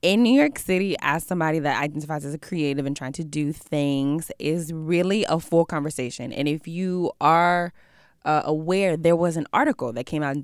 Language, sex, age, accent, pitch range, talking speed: English, female, 20-39, American, 140-180 Hz, 200 wpm